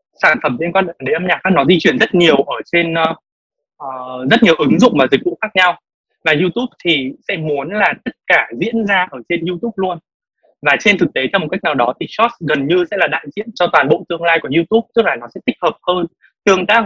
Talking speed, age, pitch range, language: 255 wpm, 20-39, 150-200 Hz, Vietnamese